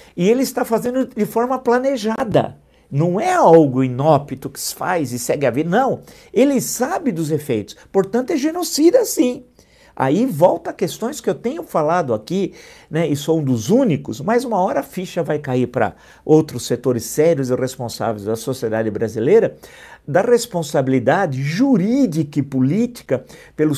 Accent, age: Brazilian, 50-69